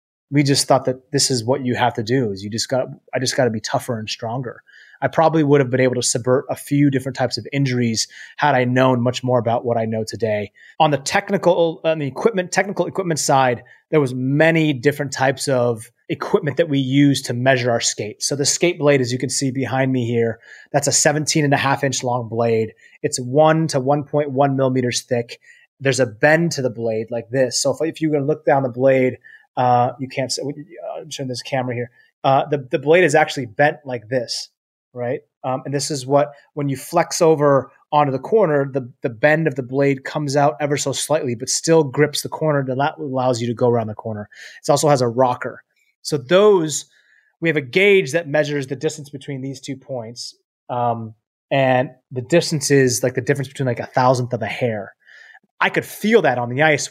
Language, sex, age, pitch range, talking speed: English, male, 30-49, 125-150 Hz, 220 wpm